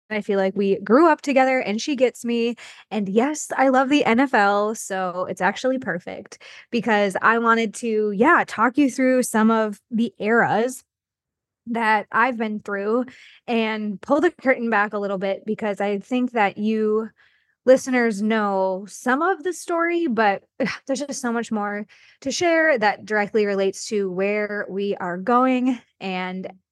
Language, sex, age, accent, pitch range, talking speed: English, female, 20-39, American, 200-250 Hz, 165 wpm